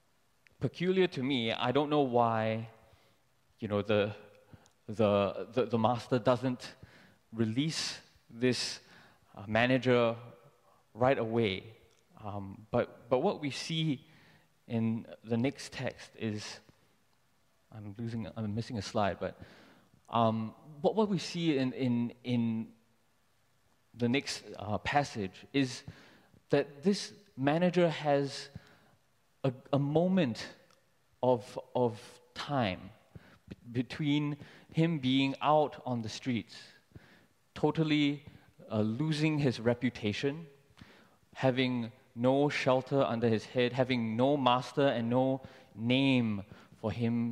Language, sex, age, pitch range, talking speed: English, male, 20-39, 110-140 Hz, 110 wpm